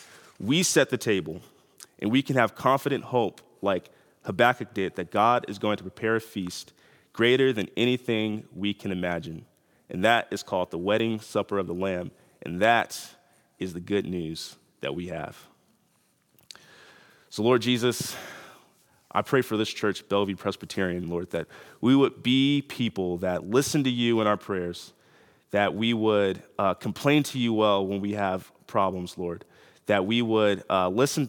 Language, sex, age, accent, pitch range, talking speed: English, male, 30-49, American, 90-115 Hz, 165 wpm